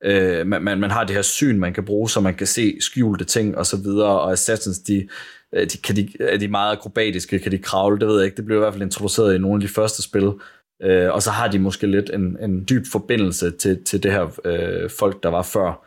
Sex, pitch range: male, 95-110 Hz